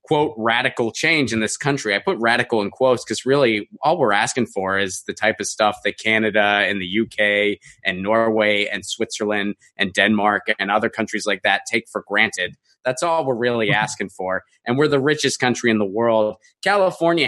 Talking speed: 195 wpm